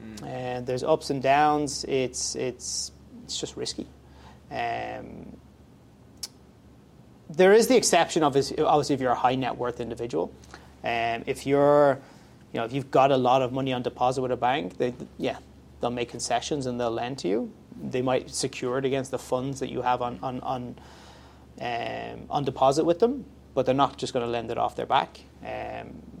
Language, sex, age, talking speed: English, male, 30-49, 190 wpm